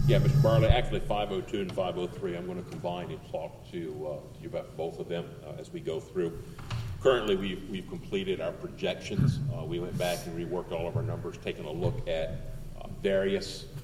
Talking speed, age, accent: 210 wpm, 50-69, American